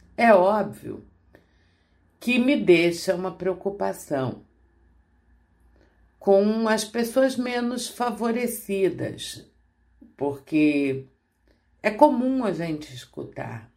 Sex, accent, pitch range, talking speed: female, Brazilian, 130-215 Hz, 80 wpm